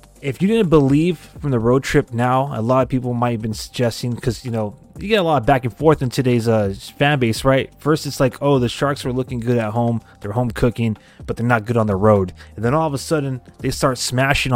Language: English